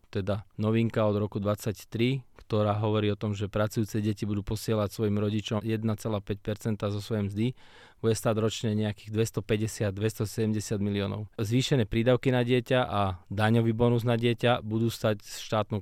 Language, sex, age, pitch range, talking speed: Slovak, male, 20-39, 105-120 Hz, 150 wpm